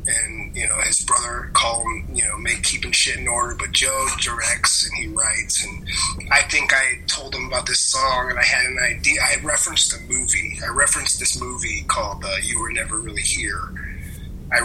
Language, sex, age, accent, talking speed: English, male, 30-49, American, 205 wpm